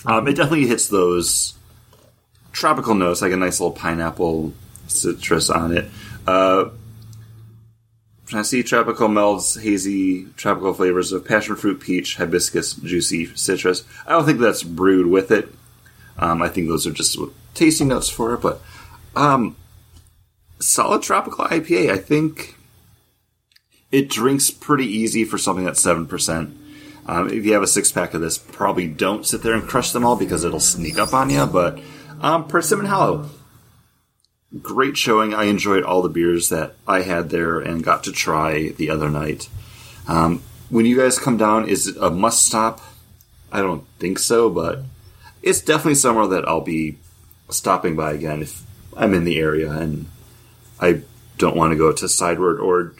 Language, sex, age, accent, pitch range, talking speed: English, male, 30-49, American, 90-115 Hz, 165 wpm